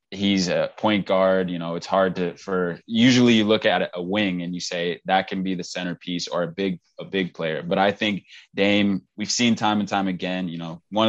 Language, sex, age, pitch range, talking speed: English, male, 20-39, 90-110 Hz, 235 wpm